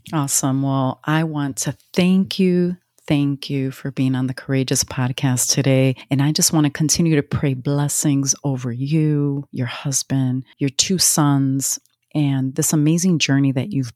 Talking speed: 165 wpm